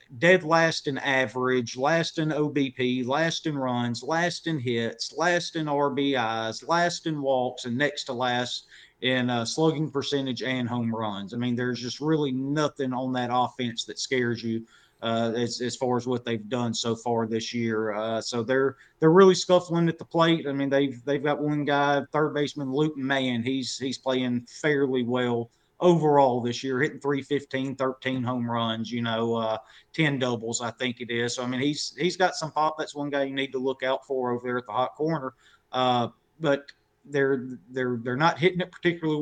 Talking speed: 195 wpm